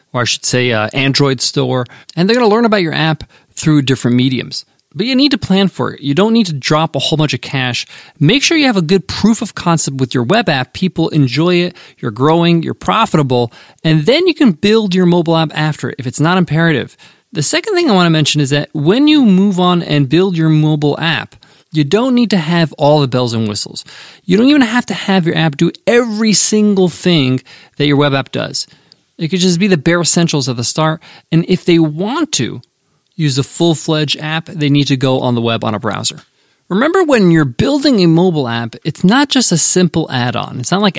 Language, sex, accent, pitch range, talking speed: English, male, American, 130-185 Hz, 235 wpm